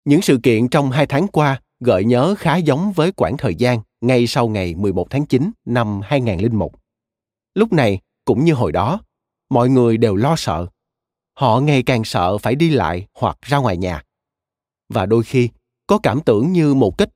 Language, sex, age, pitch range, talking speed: Vietnamese, male, 30-49, 115-150 Hz, 190 wpm